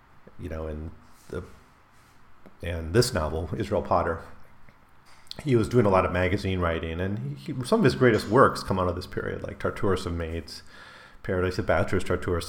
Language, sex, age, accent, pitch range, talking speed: English, male, 40-59, American, 85-110 Hz, 170 wpm